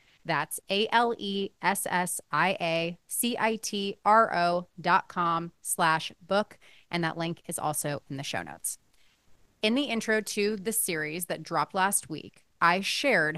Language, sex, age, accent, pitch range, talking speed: English, female, 30-49, American, 165-200 Hz, 120 wpm